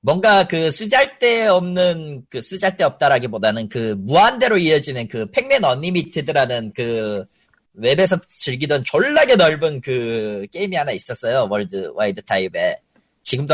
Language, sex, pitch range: Korean, male, 135-205 Hz